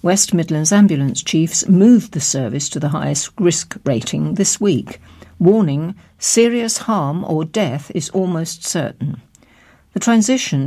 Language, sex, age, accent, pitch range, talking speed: English, female, 60-79, British, 150-205 Hz, 135 wpm